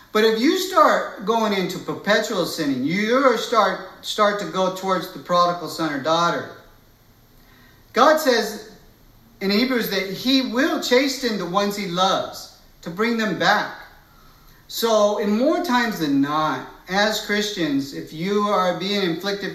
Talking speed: 145 wpm